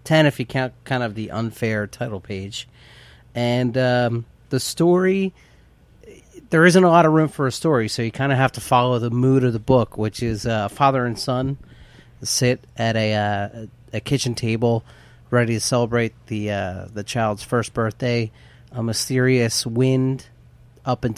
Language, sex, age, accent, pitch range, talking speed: English, male, 30-49, American, 105-125 Hz, 180 wpm